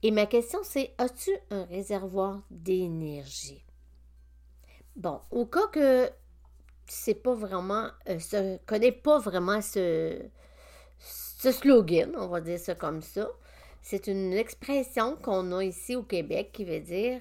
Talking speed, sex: 130 wpm, female